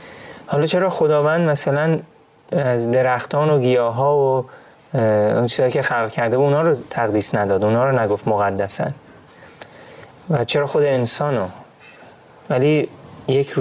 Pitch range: 115-145 Hz